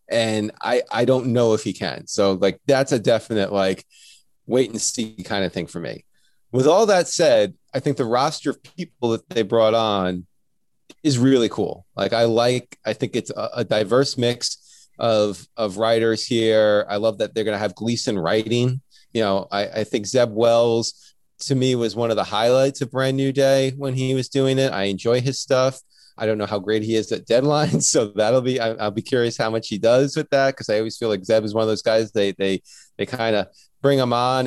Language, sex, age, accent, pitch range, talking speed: English, male, 30-49, American, 110-135 Hz, 225 wpm